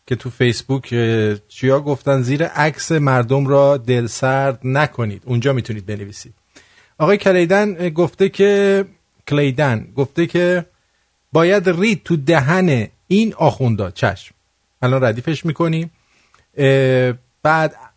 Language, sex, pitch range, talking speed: English, male, 125-170 Hz, 105 wpm